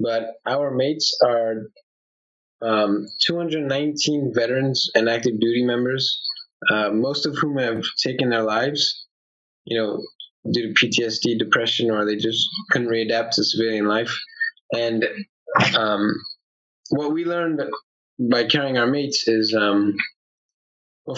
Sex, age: male, 20-39